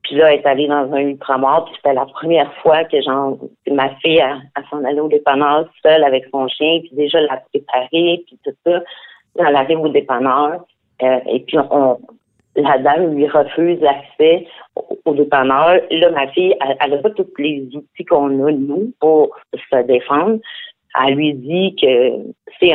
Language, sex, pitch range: French, female, 135-165 Hz